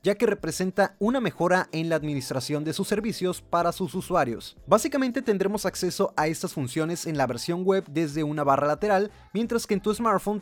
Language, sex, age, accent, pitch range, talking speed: Spanish, male, 30-49, Mexican, 150-200 Hz, 190 wpm